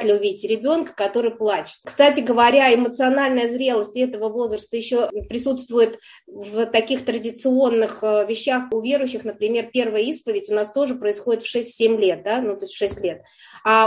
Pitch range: 210-255 Hz